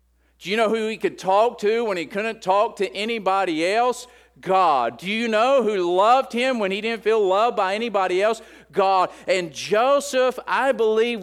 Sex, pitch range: male, 115-195 Hz